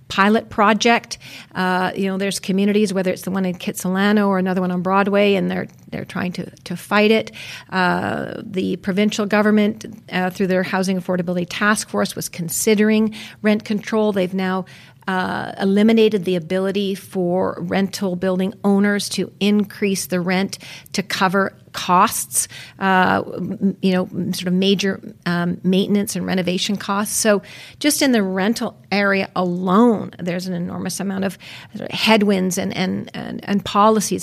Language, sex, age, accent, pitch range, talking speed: English, female, 50-69, American, 185-210 Hz, 150 wpm